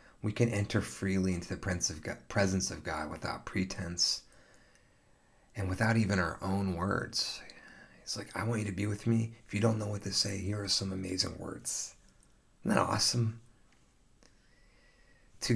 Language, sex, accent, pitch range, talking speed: English, male, American, 95-115 Hz, 160 wpm